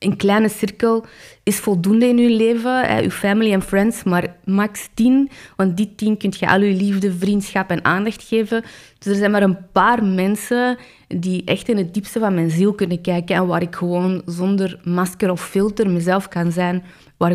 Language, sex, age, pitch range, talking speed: Dutch, female, 20-39, 180-215 Hz, 195 wpm